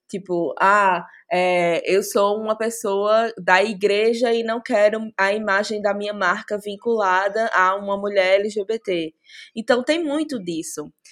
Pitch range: 180-240 Hz